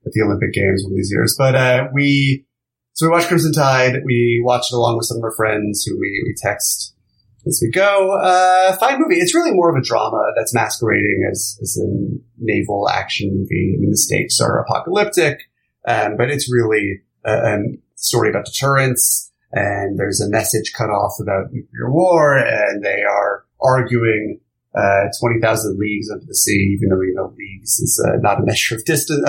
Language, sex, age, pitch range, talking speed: English, male, 30-49, 110-135 Hz, 195 wpm